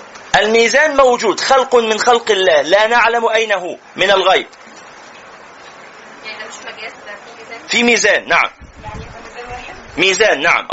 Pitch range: 215-275 Hz